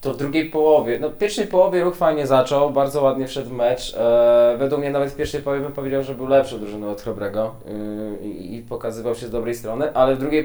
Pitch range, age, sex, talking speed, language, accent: 115-145 Hz, 20-39, male, 235 wpm, Polish, native